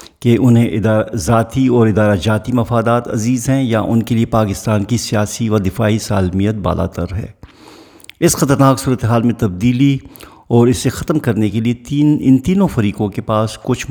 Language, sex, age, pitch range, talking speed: Urdu, male, 50-69, 100-125 Hz, 175 wpm